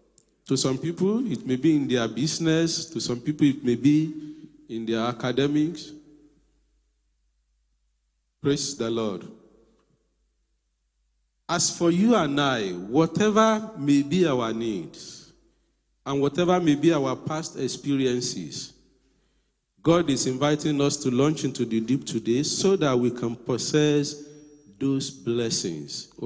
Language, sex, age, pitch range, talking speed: English, male, 50-69, 120-155 Hz, 125 wpm